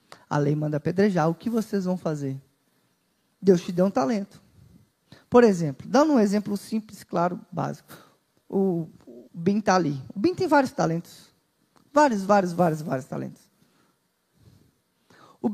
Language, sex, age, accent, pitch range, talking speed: Portuguese, male, 20-39, Brazilian, 180-260 Hz, 145 wpm